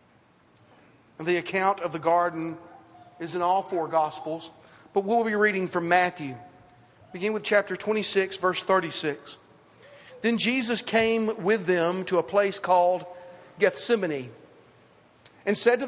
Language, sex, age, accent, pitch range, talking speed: English, male, 40-59, American, 180-220 Hz, 135 wpm